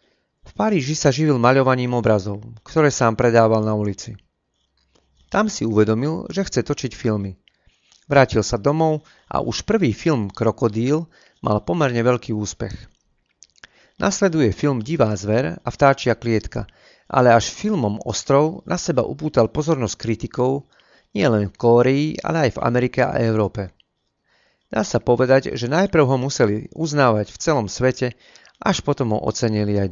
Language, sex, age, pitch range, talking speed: Slovak, male, 40-59, 110-145 Hz, 140 wpm